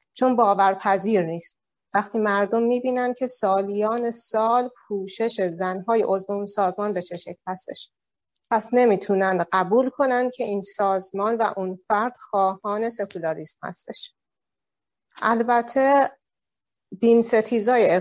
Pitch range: 185-230 Hz